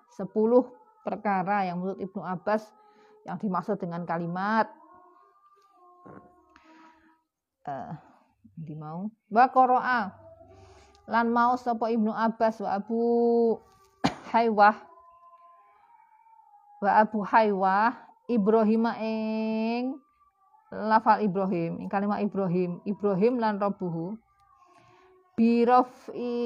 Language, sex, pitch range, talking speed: Indonesian, female, 190-260 Hz, 75 wpm